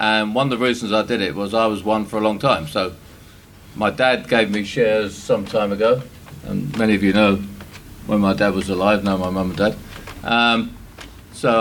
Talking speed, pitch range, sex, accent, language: 215 wpm, 110-135 Hz, male, British, English